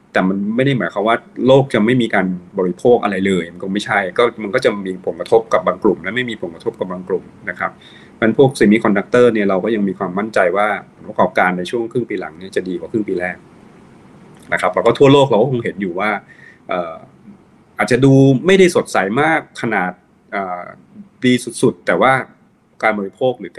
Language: Thai